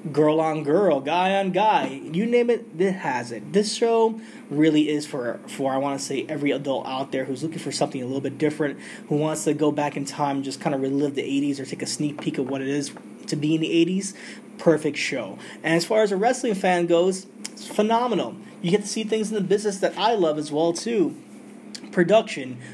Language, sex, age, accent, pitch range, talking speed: English, male, 20-39, American, 140-195 Hz, 235 wpm